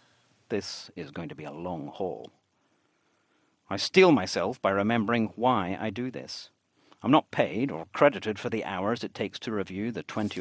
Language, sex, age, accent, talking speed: English, male, 50-69, British, 180 wpm